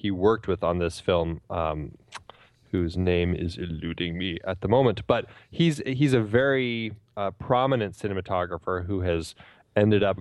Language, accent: English, American